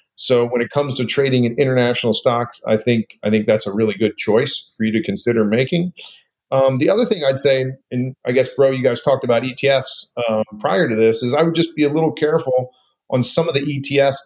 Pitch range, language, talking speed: 115-140 Hz, English, 230 wpm